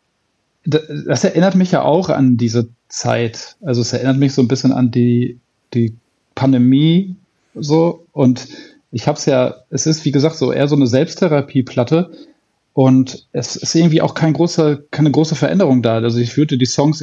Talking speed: 175 wpm